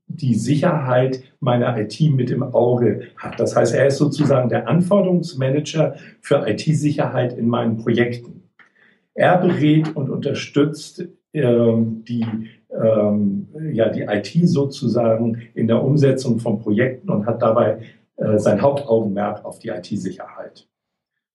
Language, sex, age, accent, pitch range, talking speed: German, male, 60-79, German, 115-145 Hz, 120 wpm